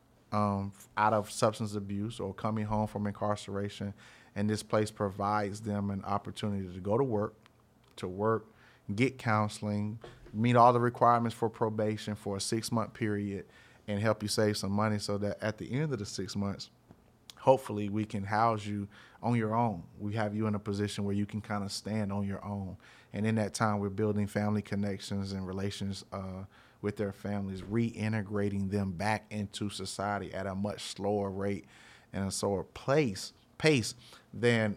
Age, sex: 30-49, male